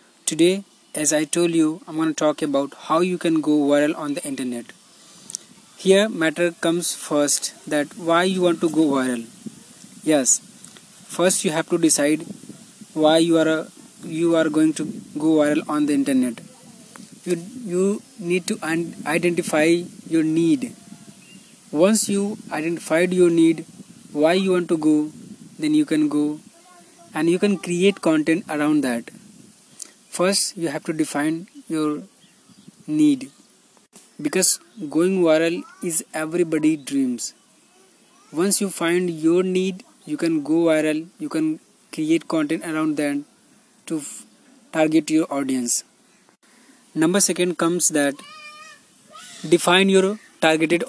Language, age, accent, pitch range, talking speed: English, 20-39, Indian, 155-210 Hz, 140 wpm